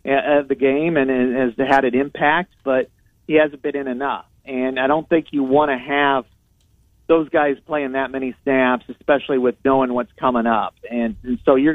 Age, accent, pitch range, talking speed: 40-59, American, 120-145 Hz, 195 wpm